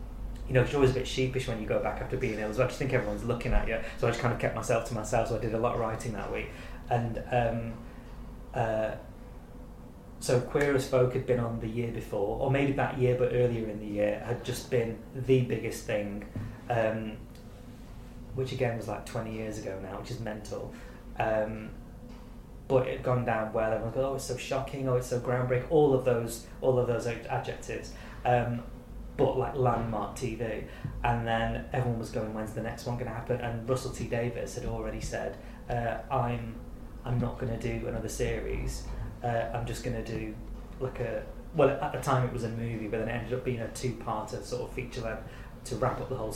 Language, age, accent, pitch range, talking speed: English, 20-39, British, 115-125 Hz, 225 wpm